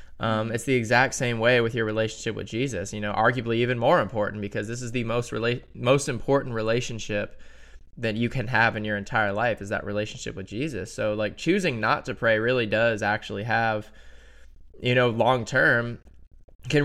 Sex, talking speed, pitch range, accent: male, 190 wpm, 105-125 Hz, American